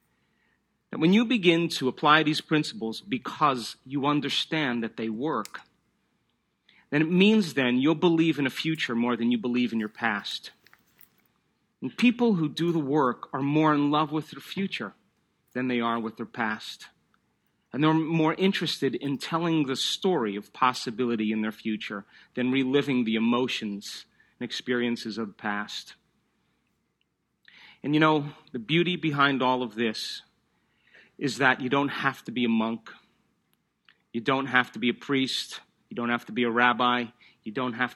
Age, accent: 40-59, American